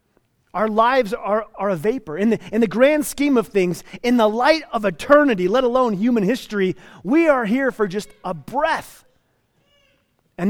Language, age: English, 30-49